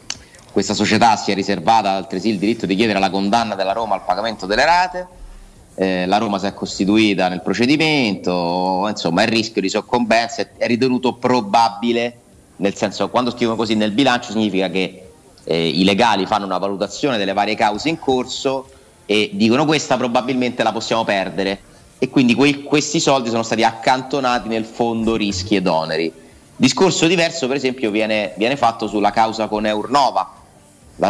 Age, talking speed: 30-49, 170 wpm